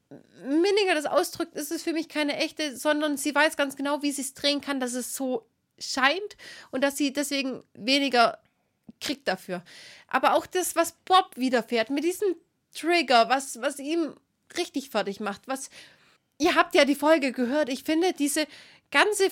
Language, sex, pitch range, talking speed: German, female, 215-290 Hz, 175 wpm